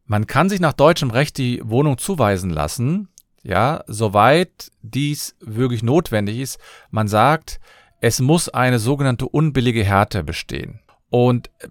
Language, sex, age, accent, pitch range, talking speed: German, male, 40-59, German, 110-145 Hz, 135 wpm